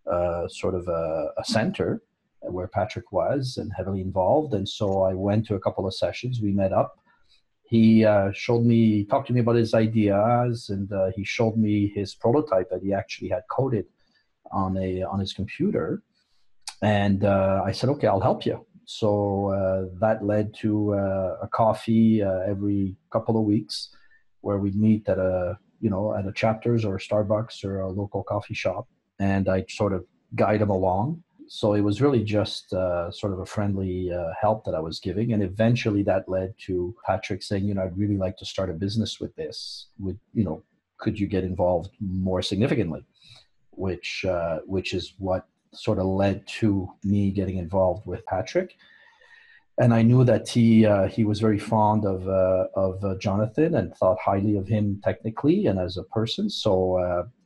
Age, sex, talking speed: 40-59, male, 190 wpm